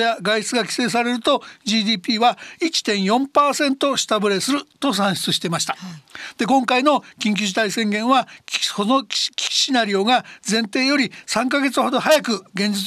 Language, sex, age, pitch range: Japanese, male, 60-79, 205-255 Hz